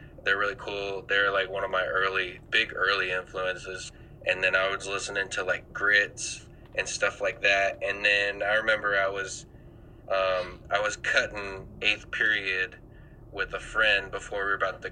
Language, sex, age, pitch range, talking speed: English, male, 20-39, 95-100 Hz, 175 wpm